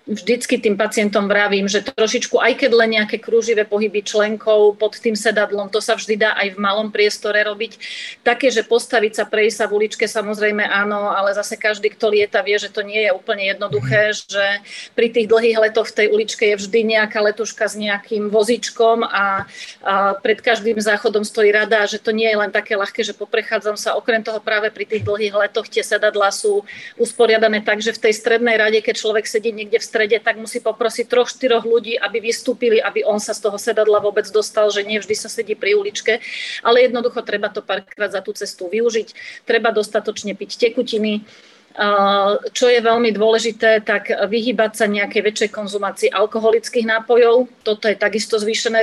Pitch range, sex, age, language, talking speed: 210-230 Hz, female, 40-59, Slovak, 185 wpm